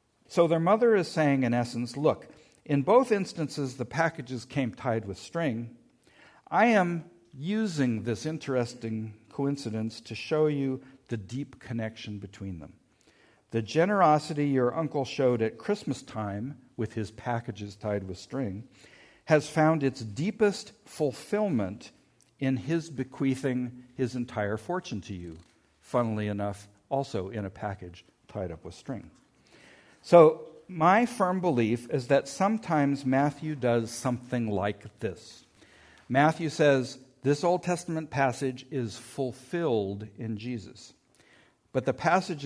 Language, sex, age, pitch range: English, male, 50-69, 115-150 Hz